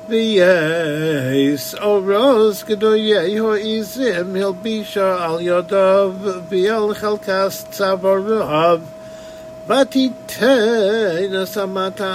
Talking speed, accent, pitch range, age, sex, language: 90 wpm, American, 175-215 Hz, 50-69, male, English